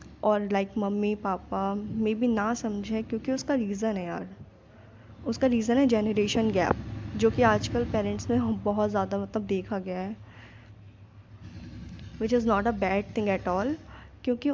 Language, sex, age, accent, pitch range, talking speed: Hindi, female, 10-29, native, 200-235 Hz, 155 wpm